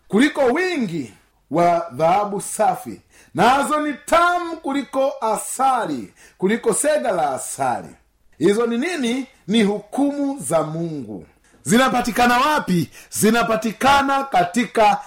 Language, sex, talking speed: Swahili, male, 105 wpm